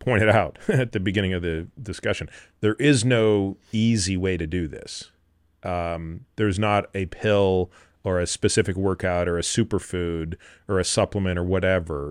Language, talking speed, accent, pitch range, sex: English, 165 wpm, American, 80-110 Hz, male